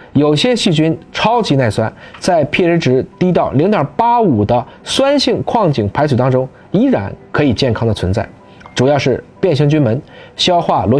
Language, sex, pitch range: Chinese, male, 115-170 Hz